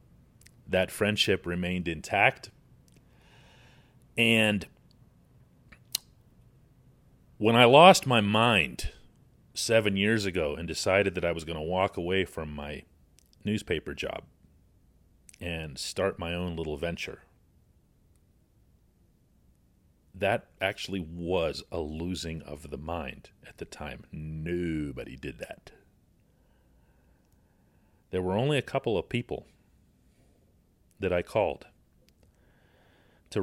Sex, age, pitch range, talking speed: male, 40-59, 80-105 Hz, 100 wpm